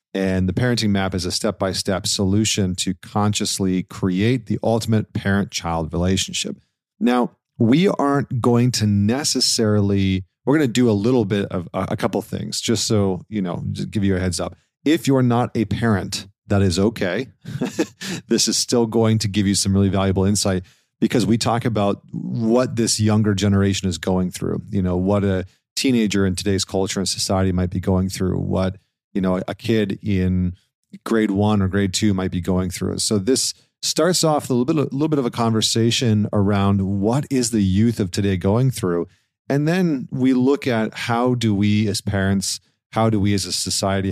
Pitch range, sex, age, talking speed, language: 95-115 Hz, male, 40-59, 190 wpm, English